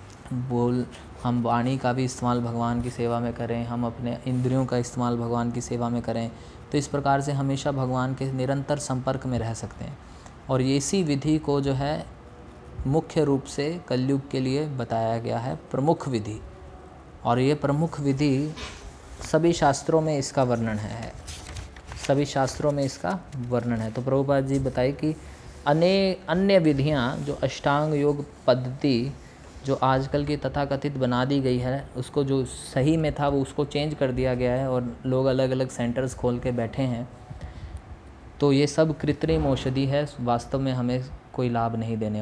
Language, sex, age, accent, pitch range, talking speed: Hindi, male, 20-39, native, 115-140 Hz, 175 wpm